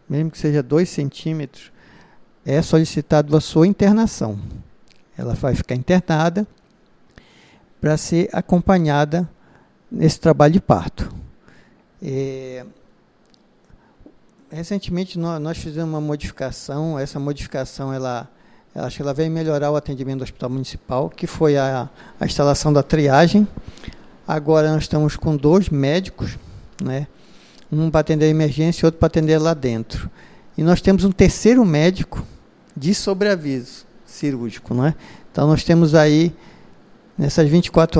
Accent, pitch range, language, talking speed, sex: Brazilian, 140-170 Hz, Portuguese, 125 wpm, male